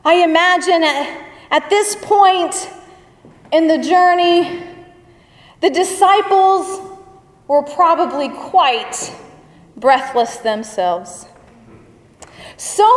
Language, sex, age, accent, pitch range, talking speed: English, female, 30-49, American, 285-370 Hz, 75 wpm